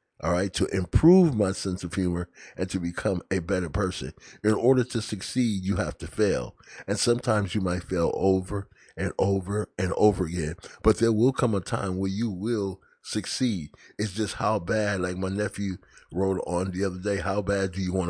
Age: 30-49